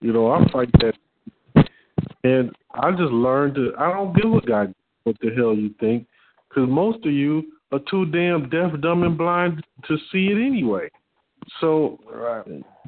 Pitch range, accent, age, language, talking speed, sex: 115-150 Hz, American, 40-59, English, 170 wpm, male